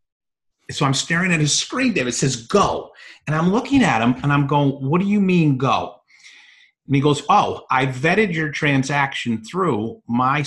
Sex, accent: male, American